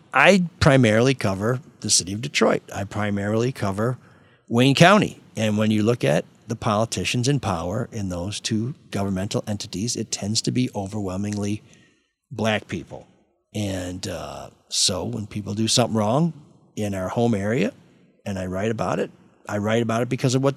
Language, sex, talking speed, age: English, male, 165 wpm, 50-69